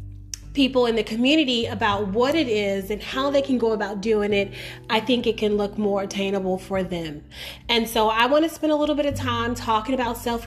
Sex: female